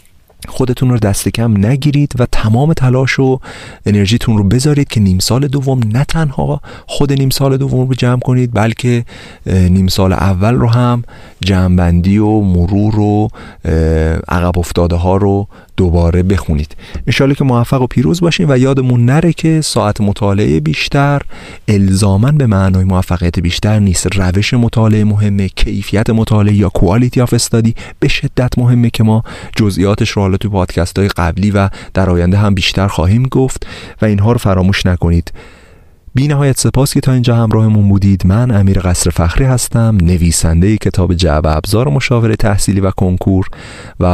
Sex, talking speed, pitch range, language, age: male, 155 wpm, 90-120 Hz, Persian, 40-59